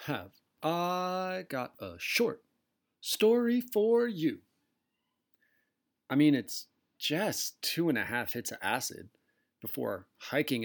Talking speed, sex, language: 120 wpm, male, English